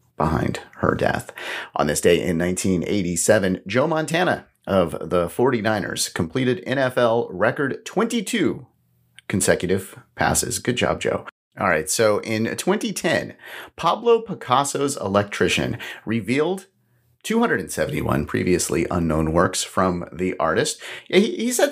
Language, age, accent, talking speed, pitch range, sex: English, 30-49, American, 115 wpm, 90-145 Hz, male